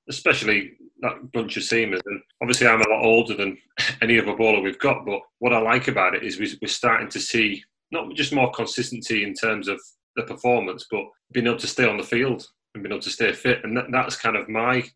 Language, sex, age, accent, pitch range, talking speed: English, male, 30-49, British, 110-120 Hz, 225 wpm